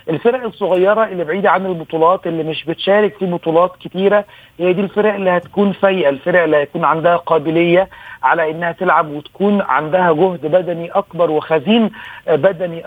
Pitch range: 155-185 Hz